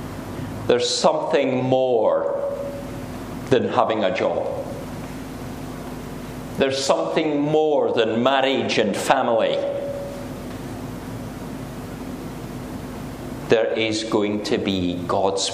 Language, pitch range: English, 120-160 Hz